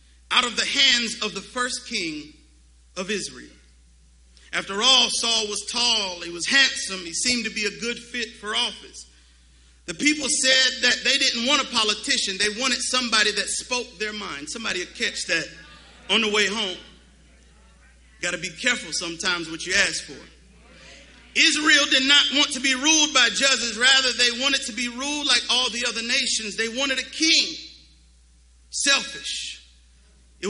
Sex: male